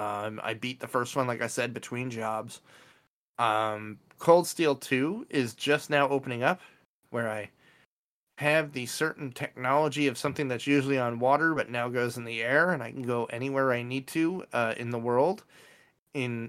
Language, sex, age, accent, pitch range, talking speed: English, male, 30-49, American, 120-150 Hz, 185 wpm